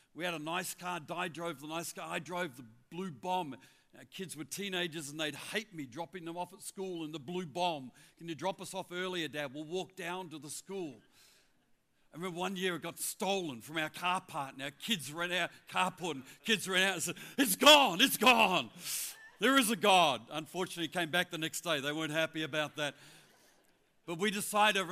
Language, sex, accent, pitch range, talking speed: English, male, New Zealand, 155-190 Hz, 220 wpm